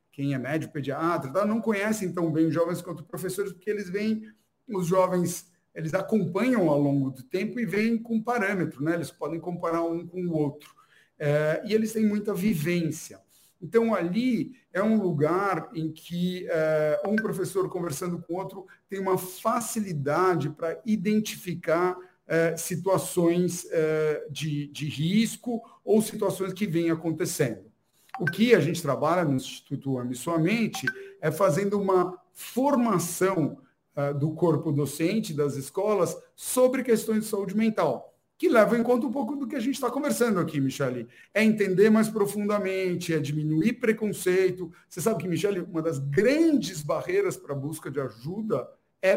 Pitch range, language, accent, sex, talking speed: 160-215 Hz, Portuguese, Brazilian, male, 155 wpm